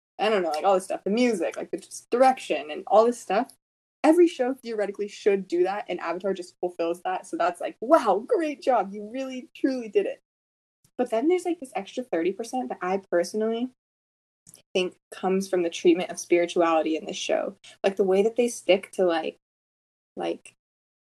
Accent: American